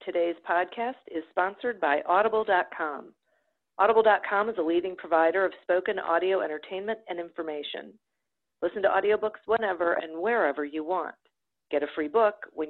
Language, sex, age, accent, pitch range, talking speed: English, female, 50-69, American, 145-180 Hz, 140 wpm